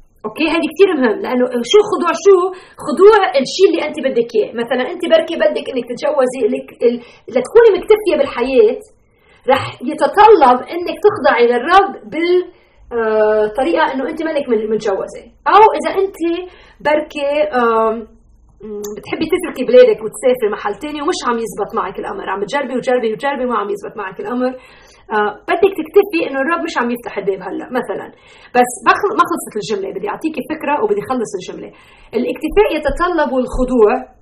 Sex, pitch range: female, 245-350 Hz